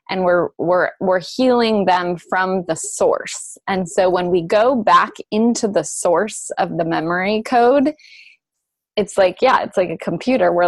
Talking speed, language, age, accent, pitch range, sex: 170 wpm, English, 20-39, American, 165-195 Hz, female